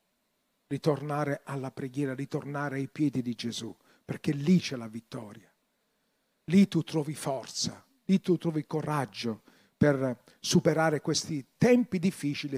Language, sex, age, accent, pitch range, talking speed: Italian, male, 50-69, native, 155-215 Hz, 125 wpm